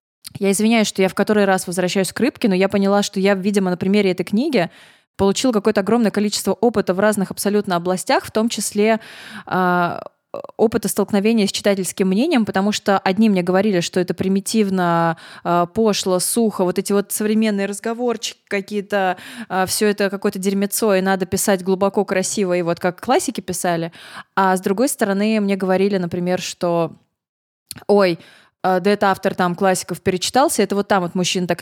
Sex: female